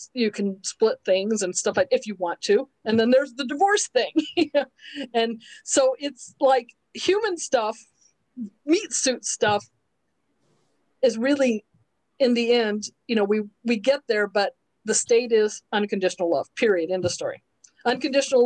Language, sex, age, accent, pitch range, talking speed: English, female, 40-59, American, 215-280 Hz, 155 wpm